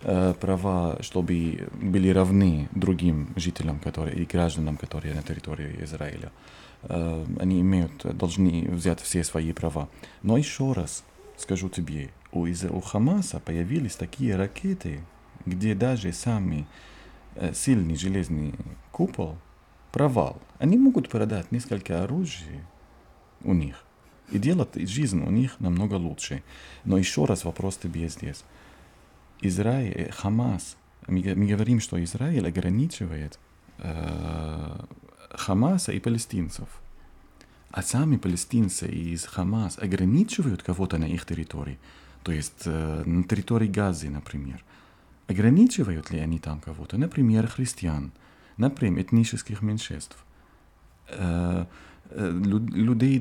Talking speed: 105 wpm